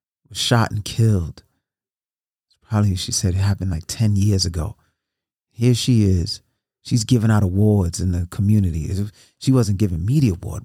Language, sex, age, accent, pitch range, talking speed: English, male, 30-49, American, 105-135 Hz, 150 wpm